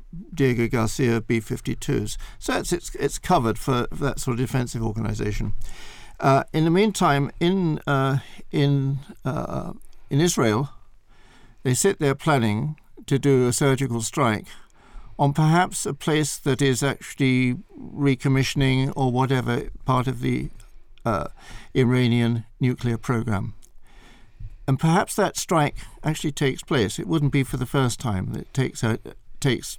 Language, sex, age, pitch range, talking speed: English, male, 60-79, 115-140 Hz, 140 wpm